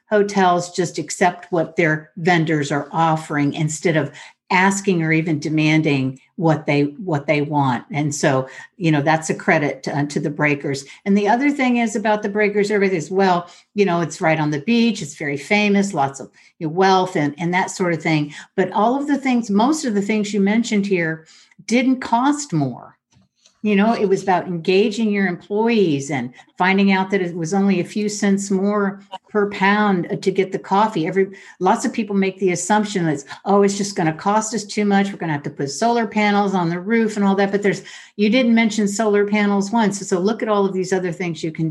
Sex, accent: female, American